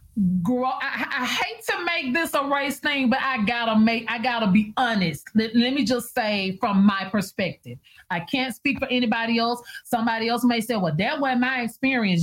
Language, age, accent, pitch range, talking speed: English, 30-49, American, 185-250 Hz, 200 wpm